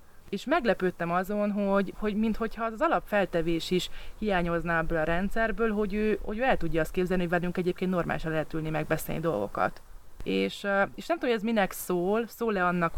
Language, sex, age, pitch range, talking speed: Hungarian, female, 30-49, 170-215 Hz, 180 wpm